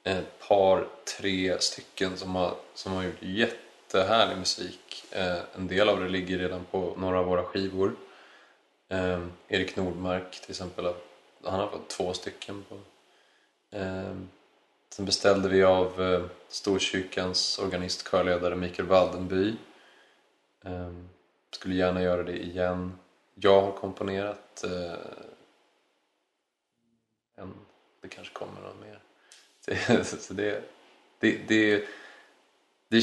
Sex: male